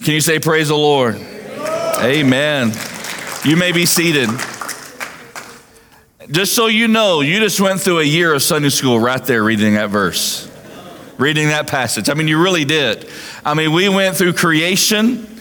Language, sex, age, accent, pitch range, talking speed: English, male, 40-59, American, 155-205 Hz, 170 wpm